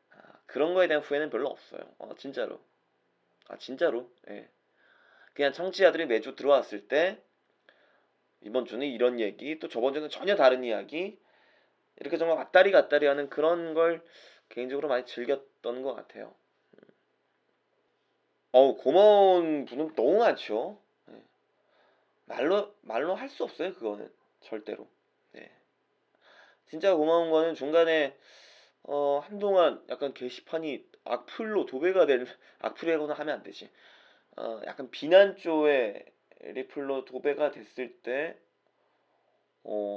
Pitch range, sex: 125-185 Hz, male